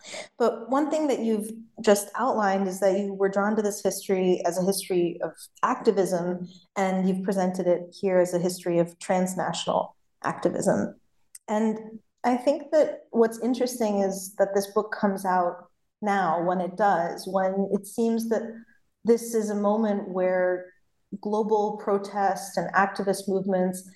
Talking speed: 155 wpm